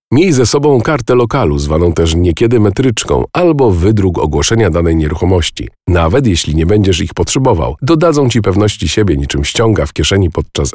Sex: male